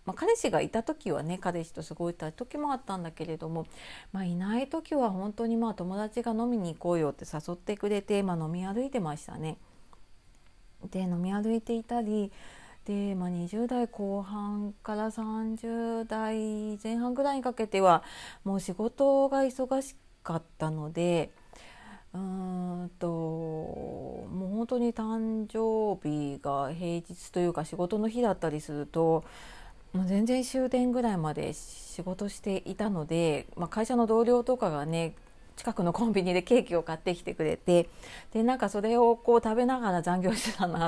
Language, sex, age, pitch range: Japanese, female, 30-49, 170-230 Hz